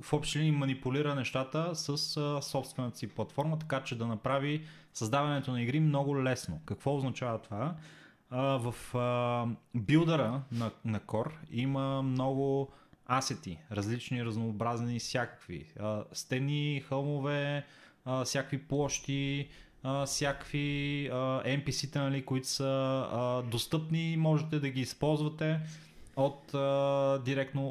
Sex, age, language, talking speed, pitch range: male, 30-49, Bulgarian, 120 wpm, 120-145 Hz